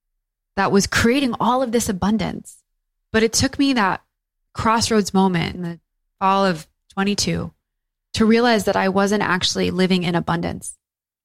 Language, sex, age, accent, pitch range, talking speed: English, female, 20-39, American, 160-195 Hz, 150 wpm